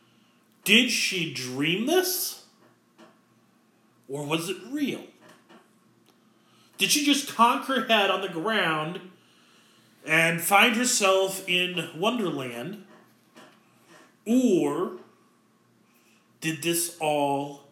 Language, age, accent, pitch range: English, 30-49, American, 155-215 Hz